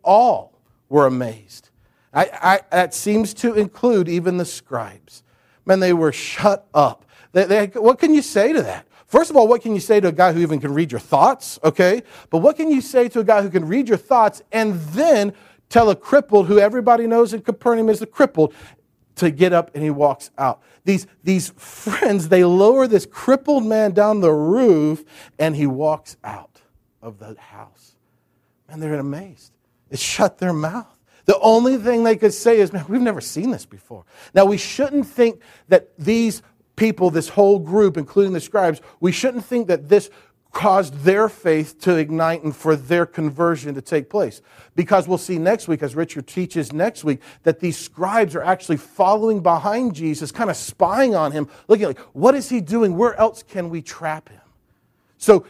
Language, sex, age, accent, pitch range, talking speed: English, male, 40-59, American, 155-220 Hz, 195 wpm